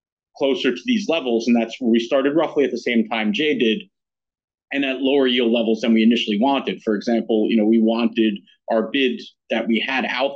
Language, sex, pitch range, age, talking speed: English, male, 110-130 Hz, 40-59, 215 wpm